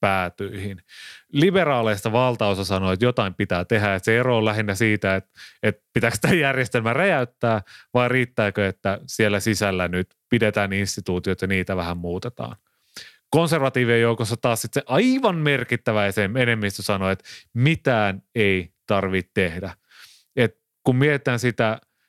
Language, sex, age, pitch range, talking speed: Finnish, male, 30-49, 95-120 Hz, 135 wpm